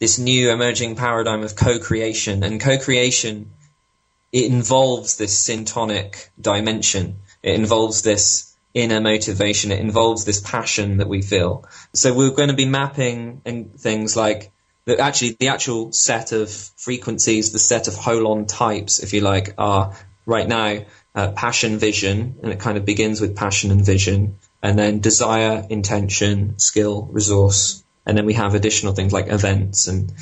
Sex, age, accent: male, 20-39, British